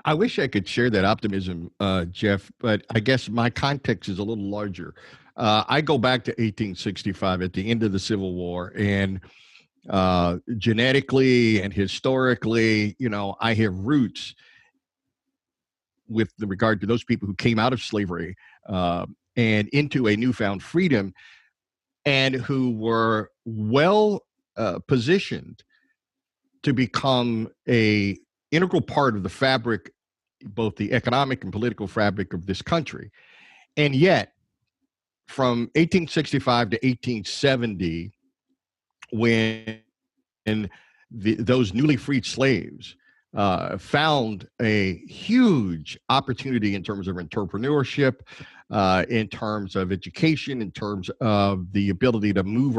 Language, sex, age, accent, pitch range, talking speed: English, male, 50-69, American, 100-135 Hz, 130 wpm